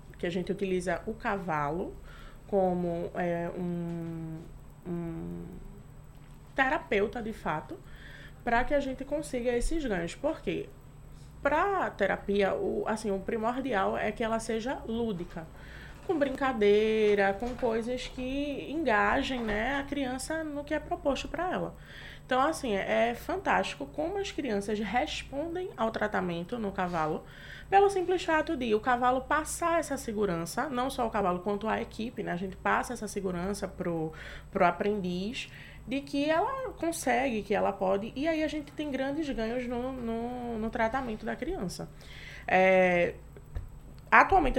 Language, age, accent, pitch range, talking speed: Portuguese, 20-39, Brazilian, 195-270 Hz, 145 wpm